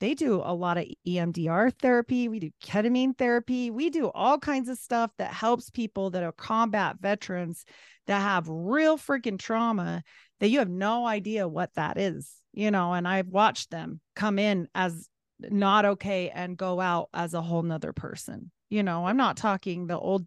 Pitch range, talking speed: 175-215 Hz, 185 wpm